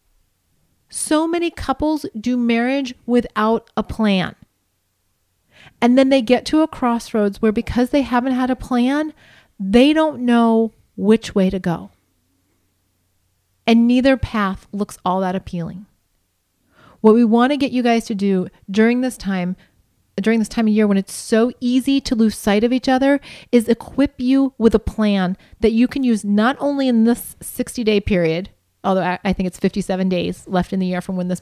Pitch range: 185-250 Hz